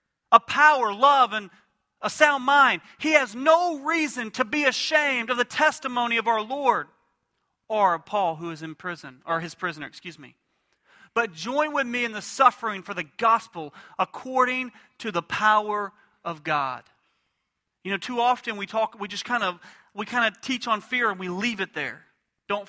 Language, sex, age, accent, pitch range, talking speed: English, male, 30-49, American, 215-275 Hz, 180 wpm